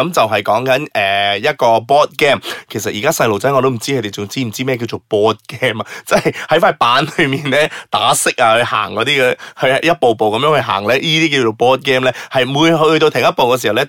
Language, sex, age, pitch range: Chinese, male, 20-39, 110-150 Hz